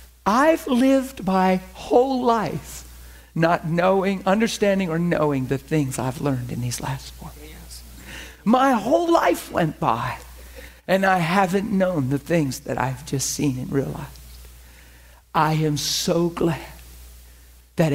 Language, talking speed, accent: English, 135 wpm, American